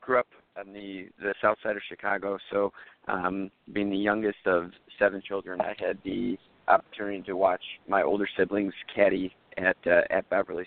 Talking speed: 175 wpm